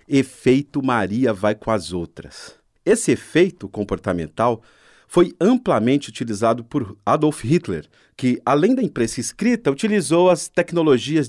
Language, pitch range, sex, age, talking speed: Portuguese, 100-145 Hz, male, 40-59, 120 wpm